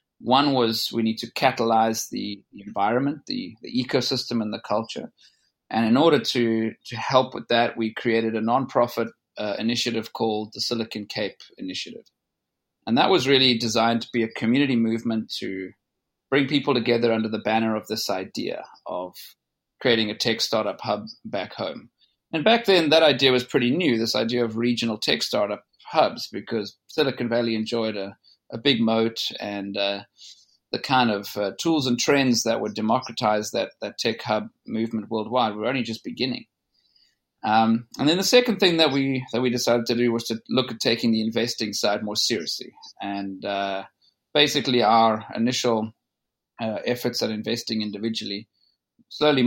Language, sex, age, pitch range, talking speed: English, male, 30-49, 110-125 Hz, 170 wpm